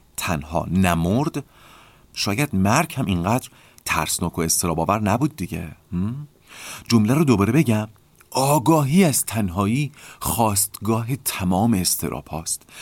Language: Persian